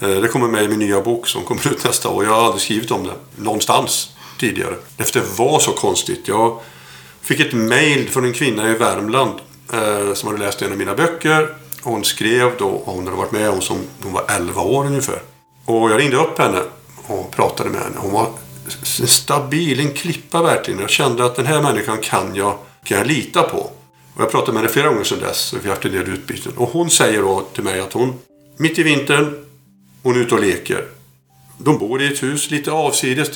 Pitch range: 105-150 Hz